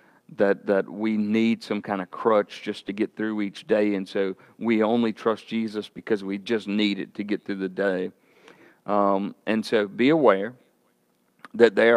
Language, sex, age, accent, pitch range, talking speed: English, male, 50-69, American, 100-115 Hz, 185 wpm